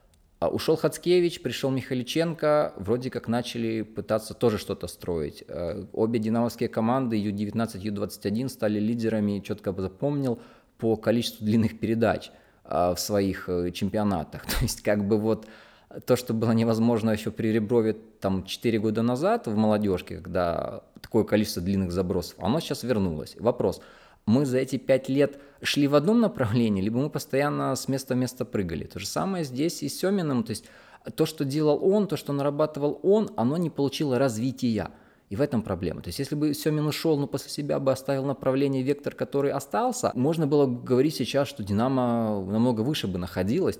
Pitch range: 110-140 Hz